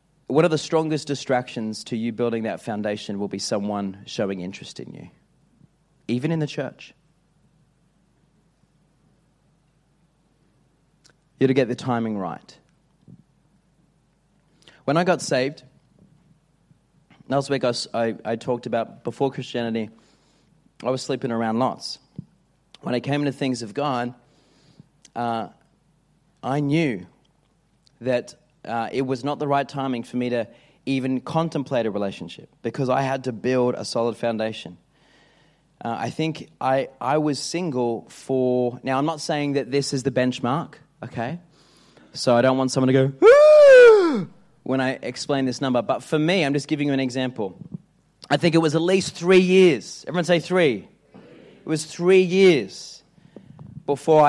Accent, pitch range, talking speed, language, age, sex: Australian, 120-160 Hz, 145 wpm, English, 30-49, male